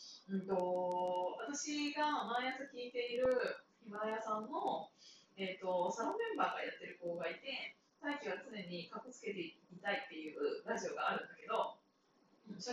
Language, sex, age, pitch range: Japanese, female, 20-39, 190-280 Hz